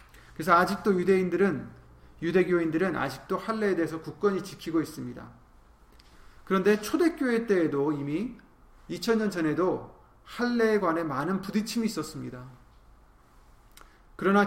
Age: 30-49